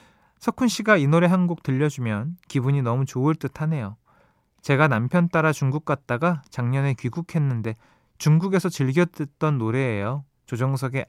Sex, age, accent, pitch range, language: male, 20-39, native, 115-165 Hz, Korean